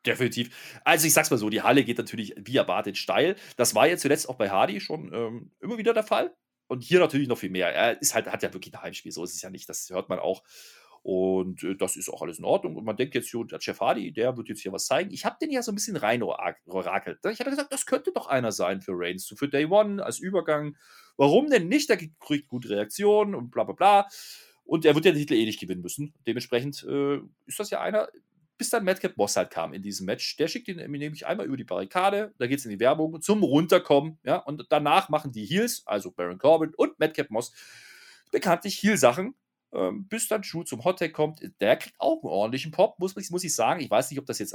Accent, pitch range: German, 125-205 Hz